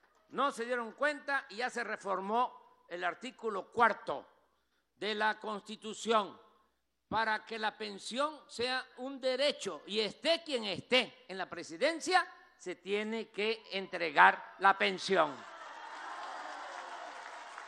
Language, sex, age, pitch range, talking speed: Spanish, male, 50-69, 205-270 Hz, 115 wpm